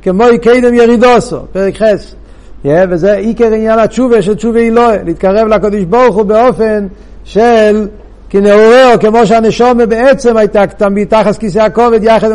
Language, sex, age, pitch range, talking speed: Hebrew, male, 60-79, 180-235 Hz, 130 wpm